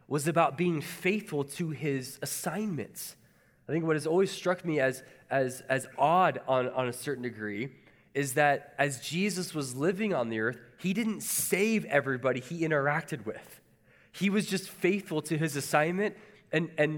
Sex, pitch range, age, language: male, 130-175 Hz, 20-39, English